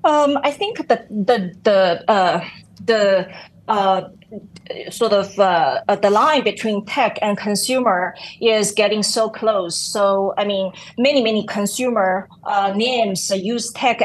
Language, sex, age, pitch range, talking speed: English, female, 30-49, 195-230 Hz, 140 wpm